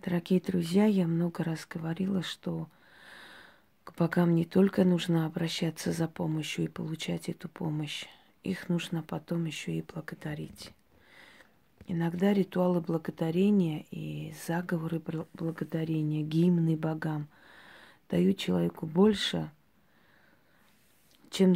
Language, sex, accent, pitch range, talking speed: Russian, female, native, 160-180 Hz, 105 wpm